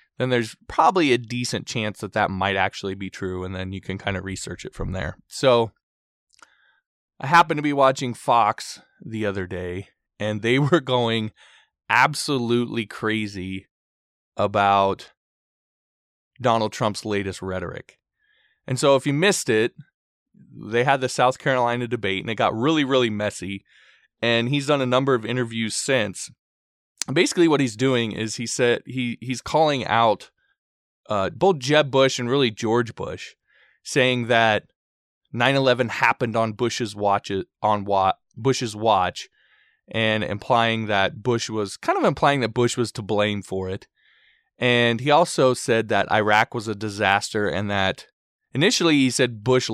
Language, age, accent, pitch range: English, 20-39, American, 100-130 Hz